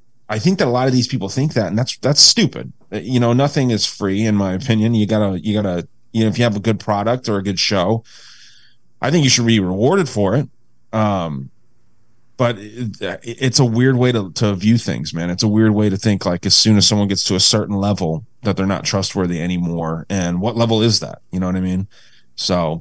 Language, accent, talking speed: English, American, 235 wpm